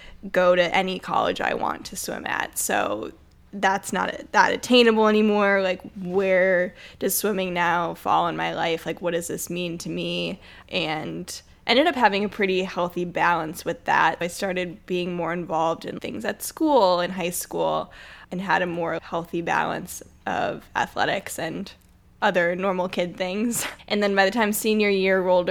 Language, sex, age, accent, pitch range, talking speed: English, female, 10-29, American, 175-195 Hz, 175 wpm